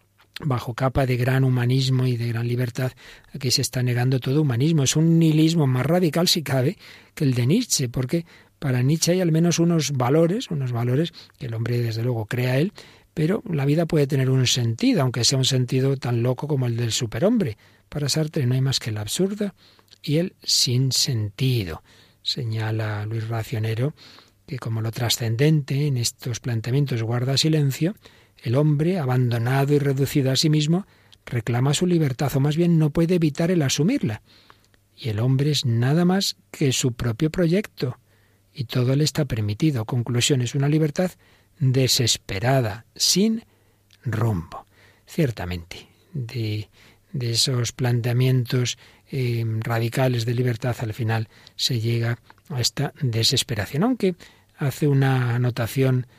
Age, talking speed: 50-69, 155 wpm